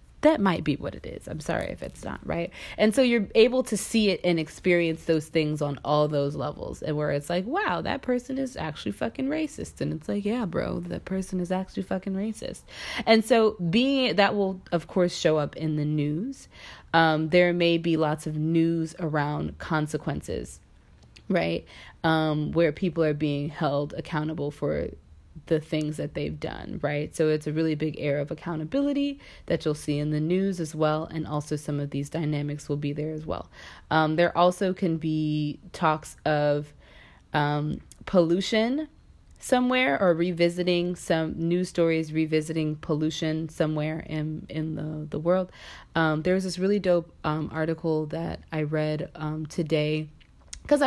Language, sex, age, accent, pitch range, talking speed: English, female, 20-39, American, 155-185 Hz, 175 wpm